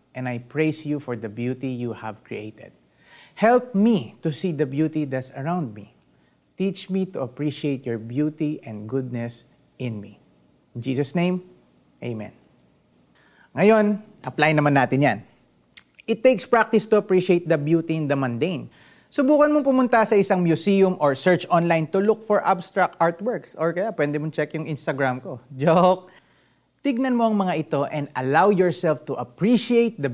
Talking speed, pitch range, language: 165 wpm, 130-190 Hz, Filipino